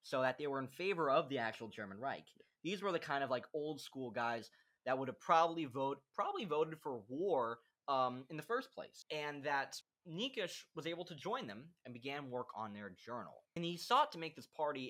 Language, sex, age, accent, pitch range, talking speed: English, male, 20-39, American, 120-165 Hz, 220 wpm